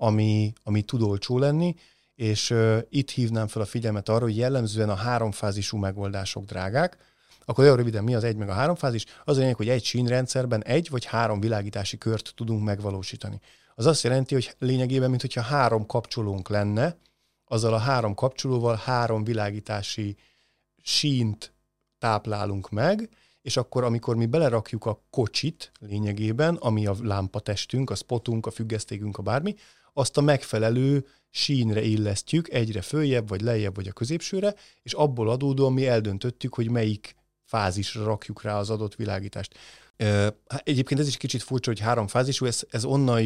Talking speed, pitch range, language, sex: 155 wpm, 105-130 Hz, Hungarian, male